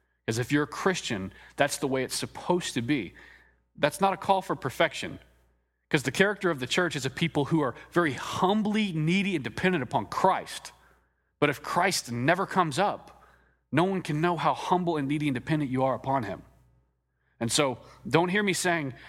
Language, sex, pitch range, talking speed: English, male, 115-155 Hz, 190 wpm